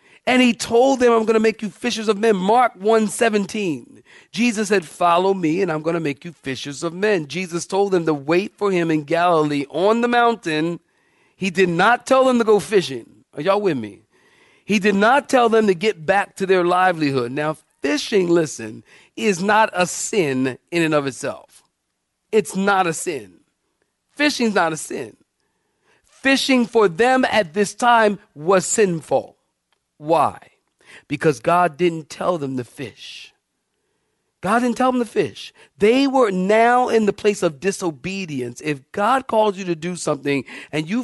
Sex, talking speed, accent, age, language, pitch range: male, 175 wpm, American, 40-59, English, 160-225 Hz